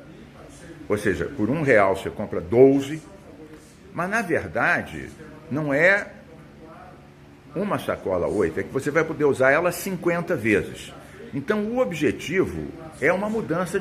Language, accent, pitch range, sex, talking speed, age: English, Brazilian, 130-205 Hz, male, 135 wpm, 60-79